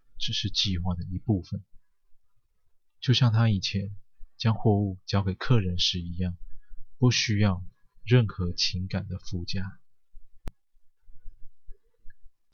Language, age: Chinese, 20-39